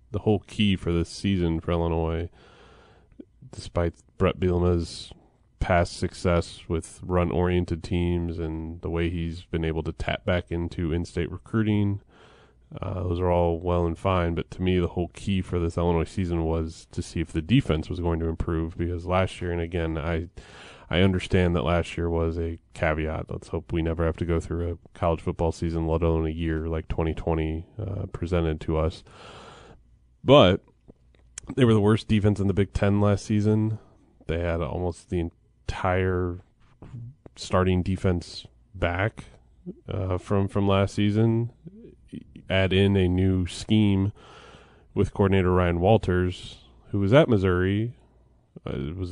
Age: 20-39